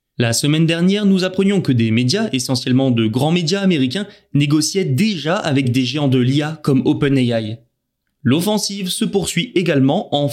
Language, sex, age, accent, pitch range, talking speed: French, male, 20-39, French, 125-175 Hz, 155 wpm